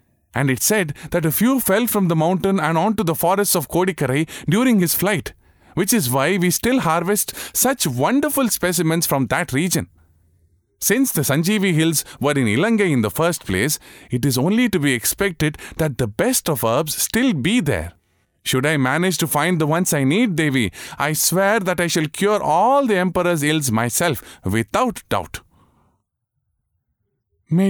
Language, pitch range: English, 110-170 Hz